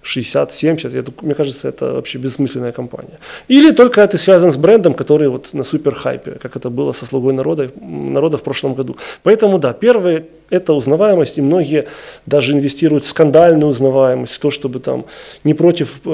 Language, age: Russian, 20-39